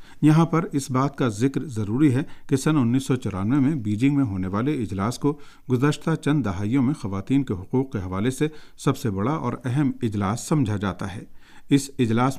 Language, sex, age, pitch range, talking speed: Urdu, male, 50-69, 110-140 Hz, 195 wpm